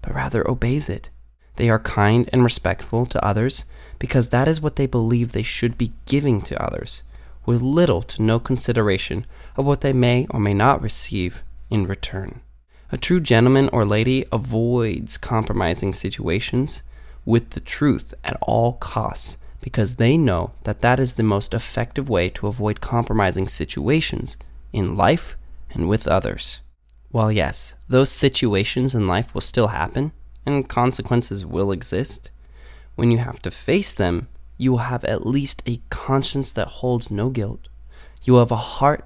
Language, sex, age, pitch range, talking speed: English, male, 20-39, 90-125 Hz, 165 wpm